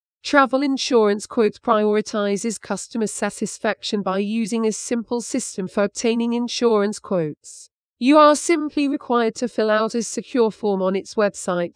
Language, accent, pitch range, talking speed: English, British, 210-240 Hz, 145 wpm